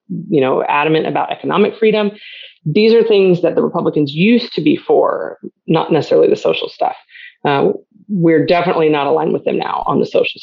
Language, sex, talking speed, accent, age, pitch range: English, female, 185 wpm, American, 30-49, 160-215 Hz